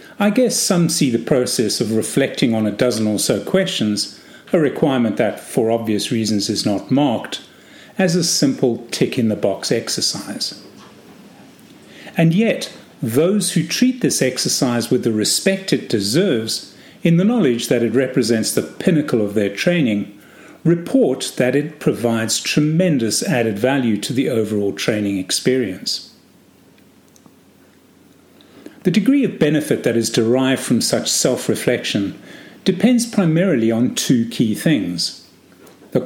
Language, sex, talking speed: English, male, 135 wpm